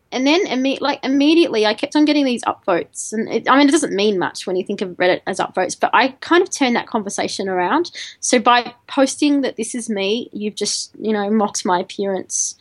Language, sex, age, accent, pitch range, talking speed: English, female, 20-39, Australian, 205-270 Hz, 225 wpm